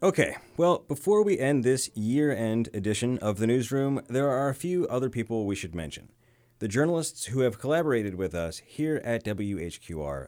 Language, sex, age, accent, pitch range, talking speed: English, male, 30-49, American, 100-130 Hz, 175 wpm